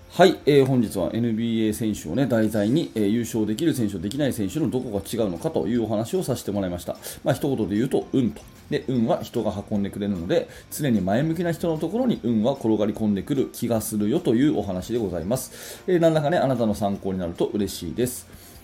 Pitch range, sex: 100-140 Hz, male